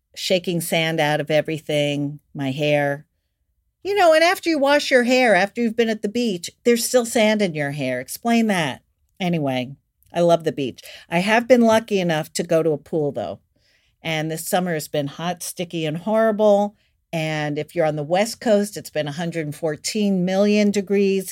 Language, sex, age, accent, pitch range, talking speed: English, female, 50-69, American, 155-200 Hz, 185 wpm